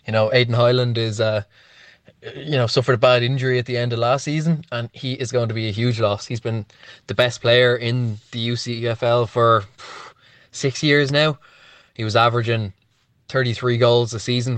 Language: English